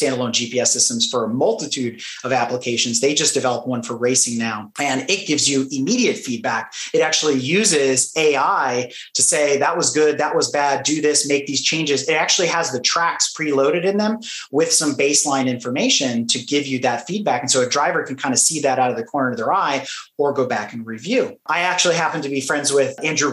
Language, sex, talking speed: English, male, 215 wpm